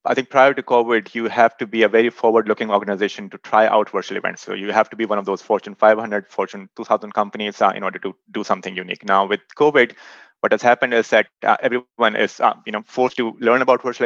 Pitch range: 105-125 Hz